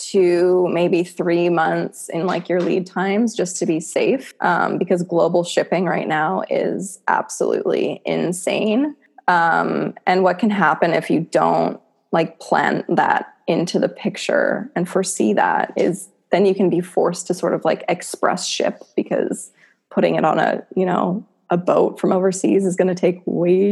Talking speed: 170 wpm